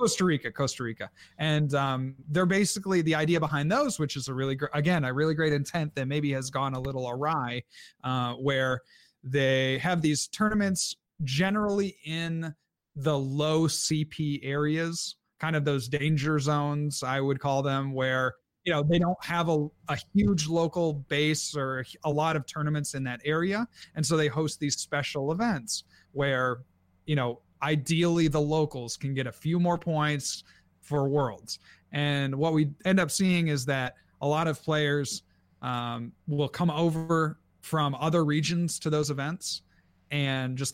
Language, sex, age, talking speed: English, male, 30-49, 170 wpm